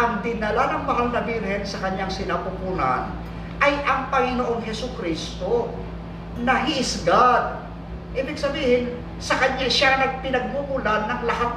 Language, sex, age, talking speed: Filipino, male, 50-69, 130 wpm